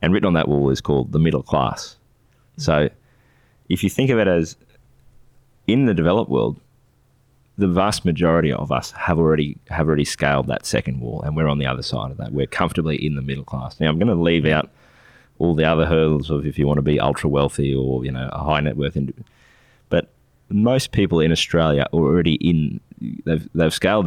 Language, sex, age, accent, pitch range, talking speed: English, male, 20-39, Australian, 75-90 Hz, 210 wpm